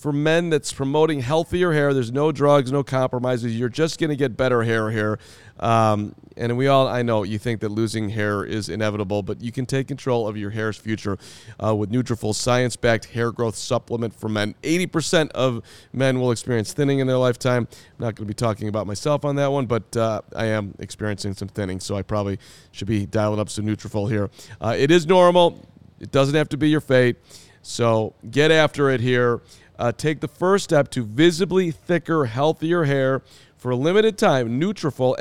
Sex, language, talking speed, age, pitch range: male, English, 200 wpm, 40-59, 110-150 Hz